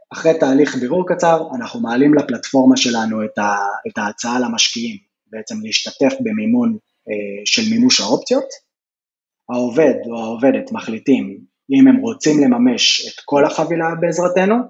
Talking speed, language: 130 wpm, Hebrew